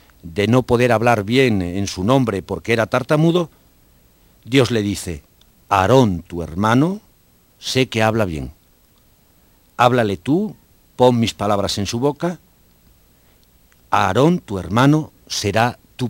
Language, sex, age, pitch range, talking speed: Spanish, male, 50-69, 95-130 Hz, 125 wpm